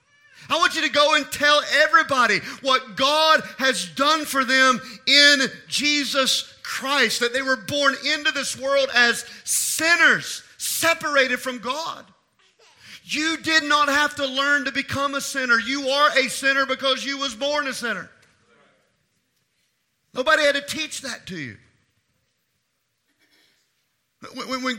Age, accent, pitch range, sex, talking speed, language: 40-59, American, 235-280 Hz, male, 140 wpm, English